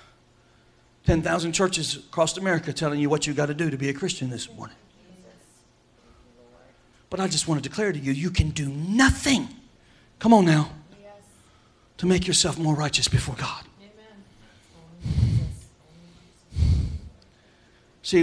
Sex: male